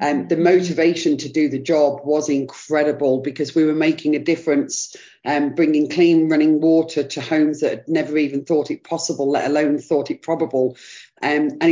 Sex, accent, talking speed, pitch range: female, British, 195 wpm, 155-190 Hz